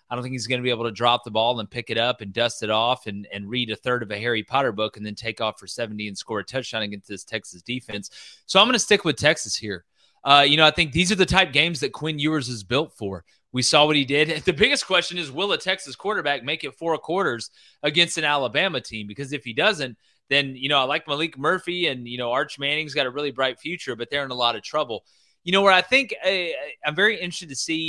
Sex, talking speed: male, 275 wpm